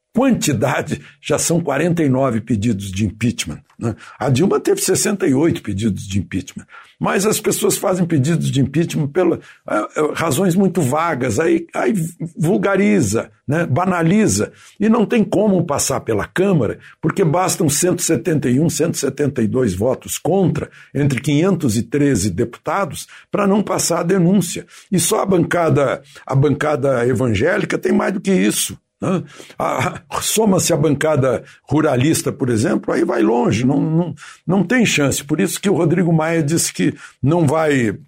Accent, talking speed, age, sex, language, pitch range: Brazilian, 135 wpm, 60-79, male, Portuguese, 130-180 Hz